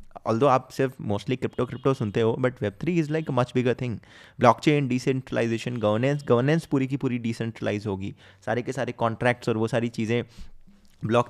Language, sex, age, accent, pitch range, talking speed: Hindi, male, 20-39, native, 115-160 Hz, 195 wpm